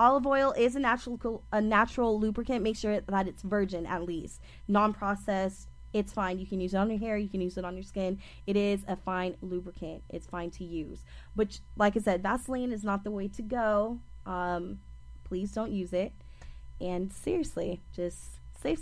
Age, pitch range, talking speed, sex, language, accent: 20-39, 195-245 Hz, 195 wpm, female, English, American